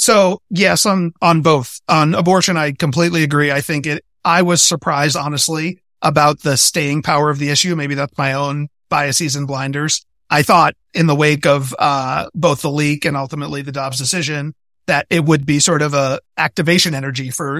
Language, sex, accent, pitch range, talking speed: English, male, American, 145-170 Hz, 190 wpm